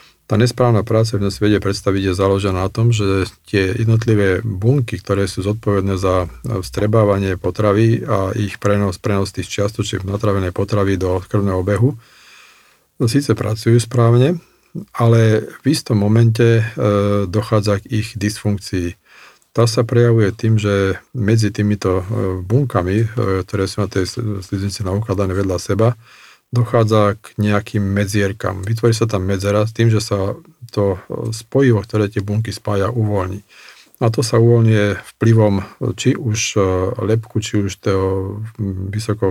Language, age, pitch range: Slovak, 50-69, 100-115 Hz